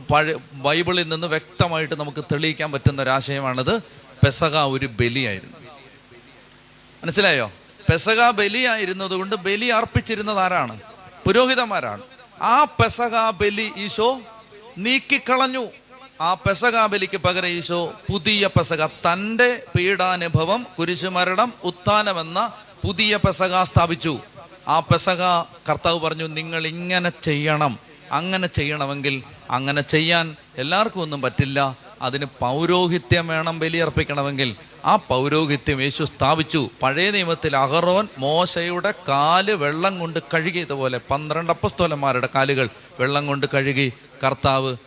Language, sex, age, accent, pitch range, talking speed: Malayalam, male, 30-49, native, 135-180 Hz, 100 wpm